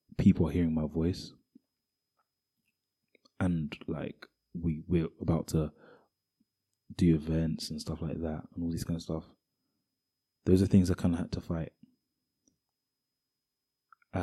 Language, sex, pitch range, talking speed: English, male, 80-90 Hz, 135 wpm